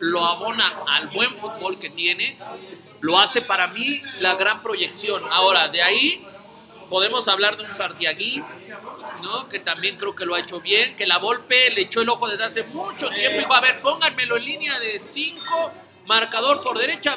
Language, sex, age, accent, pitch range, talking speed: Spanish, male, 40-59, Mexican, 210-315 Hz, 185 wpm